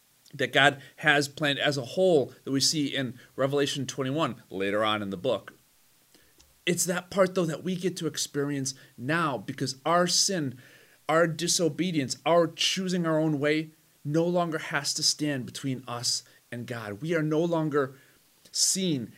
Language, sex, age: English, male, 30-49